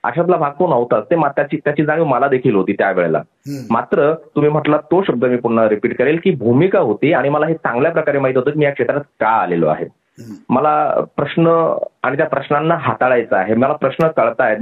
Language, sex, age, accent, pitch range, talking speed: Marathi, male, 30-49, native, 135-180 Hz, 170 wpm